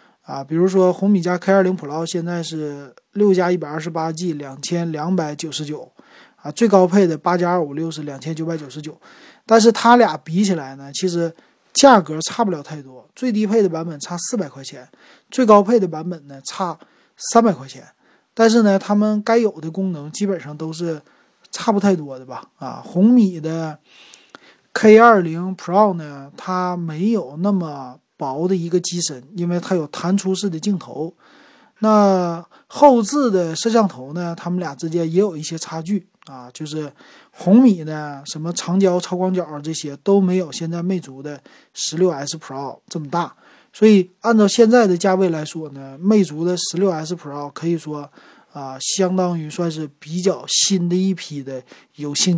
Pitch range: 155-195 Hz